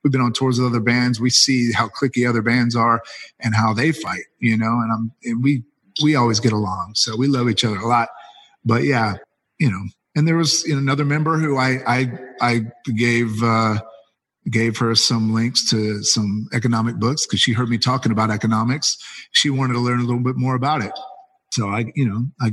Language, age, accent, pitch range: English, 40-59, American, 115-135 Hz